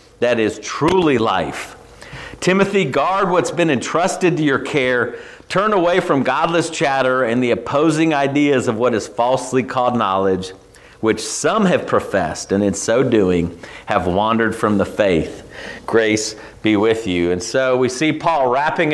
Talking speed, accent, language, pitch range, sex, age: 160 wpm, American, English, 135-185 Hz, male, 40-59